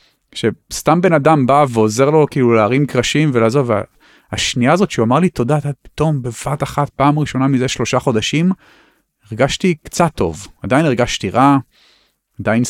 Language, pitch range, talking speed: Hebrew, 105-145 Hz, 150 wpm